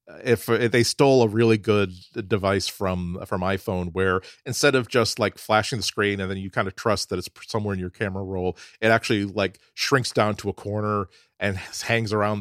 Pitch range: 95-115 Hz